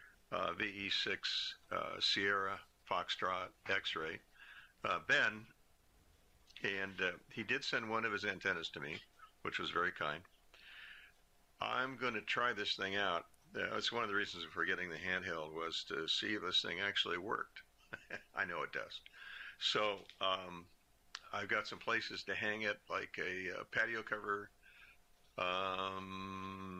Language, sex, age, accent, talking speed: English, male, 50-69, American, 145 wpm